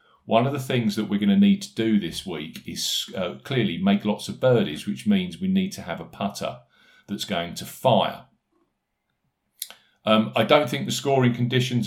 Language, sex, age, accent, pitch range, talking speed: English, male, 40-59, British, 105-155 Hz, 195 wpm